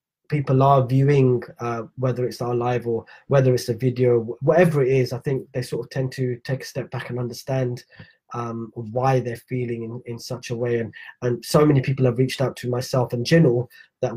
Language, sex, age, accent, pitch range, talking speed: English, male, 20-39, British, 125-145 Hz, 215 wpm